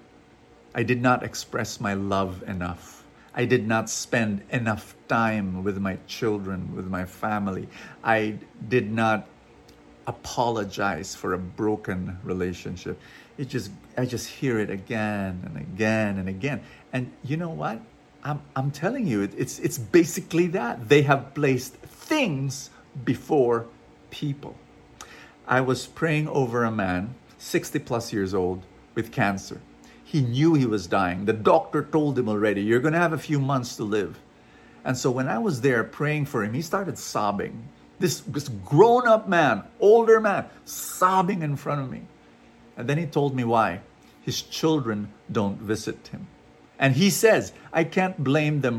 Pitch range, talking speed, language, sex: 105-150 Hz, 155 wpm, English, male